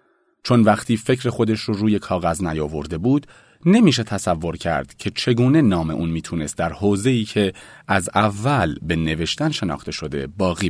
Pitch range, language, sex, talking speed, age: 90-135 Hz, Persian, male, 150 wpm, 40-59